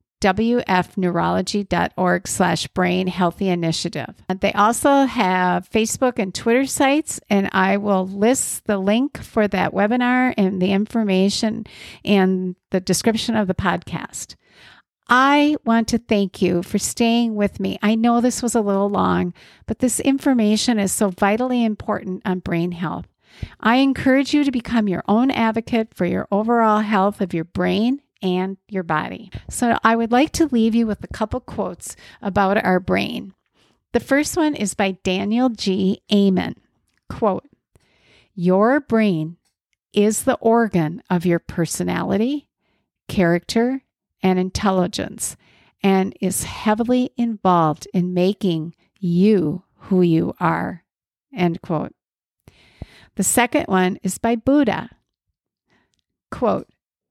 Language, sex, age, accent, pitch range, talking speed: English, female, 50-69, American, 185-235 Hz, 130 wpm